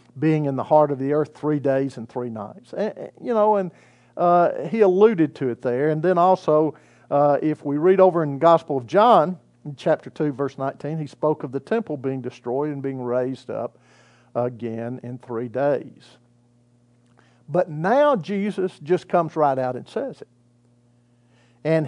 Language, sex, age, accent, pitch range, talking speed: English, male, 50-69, American, 130-210 Hz, 180 wpm